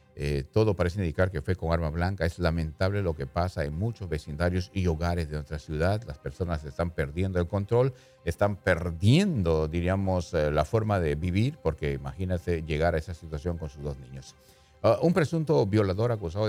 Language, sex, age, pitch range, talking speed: English, male, 50-69, 80-105 Hz, 185 wpm